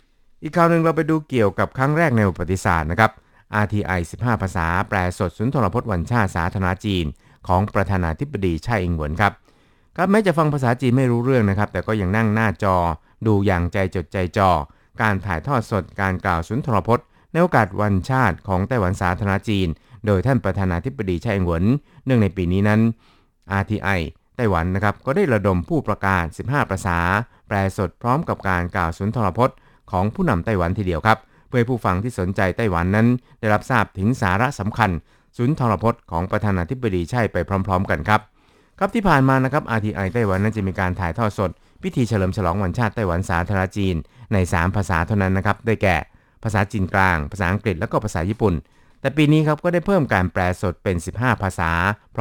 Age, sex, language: 60-79, male, Thai